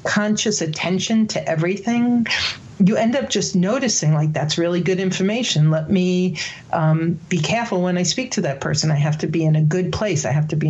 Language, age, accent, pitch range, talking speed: English, 50-69, American, 155-185 Hz, 210 wpm